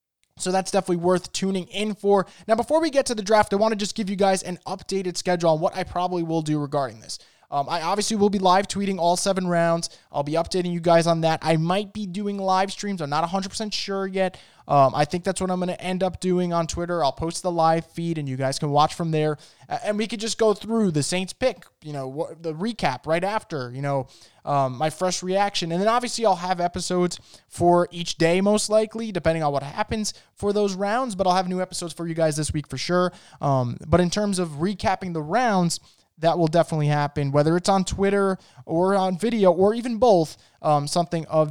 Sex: male